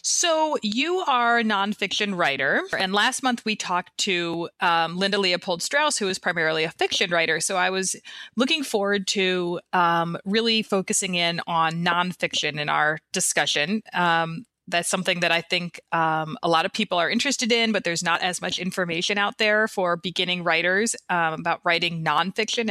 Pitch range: 170-205 Hz